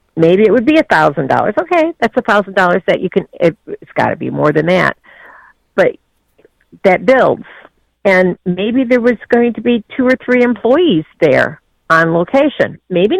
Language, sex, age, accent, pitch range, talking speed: English, female, 50-69, American, 170-235 Hz, 165 wpm